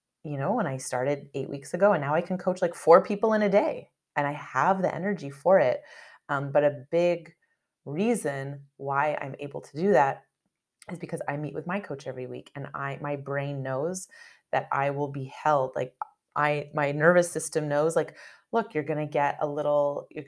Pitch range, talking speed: 140-175 Hz, 210 wpm